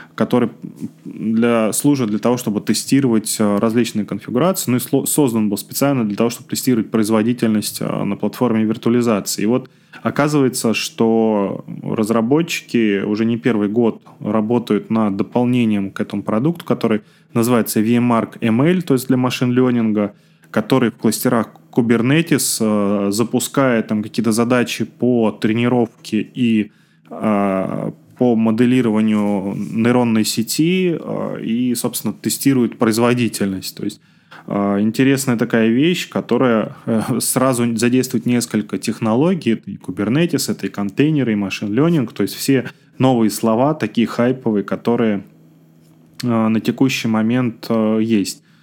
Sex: male